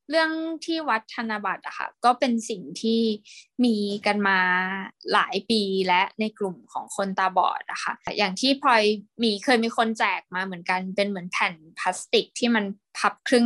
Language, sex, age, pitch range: Thai, female, 20-39, 195-245 Hz